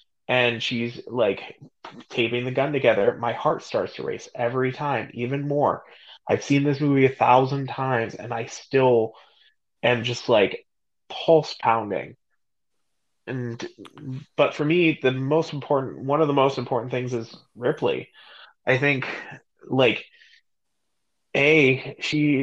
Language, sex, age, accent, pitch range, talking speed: English, male, 20-39, American, 120-145 Hz, 135 wpm